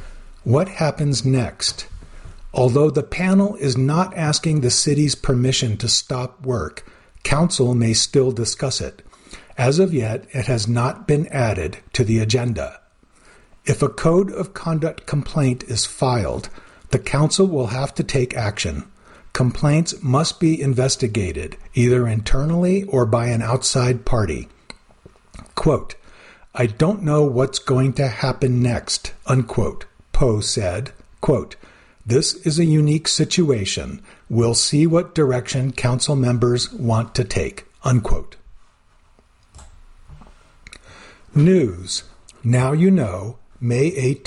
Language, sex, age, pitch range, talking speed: English, male, 50-69, 115-150 Hz, 125 wpm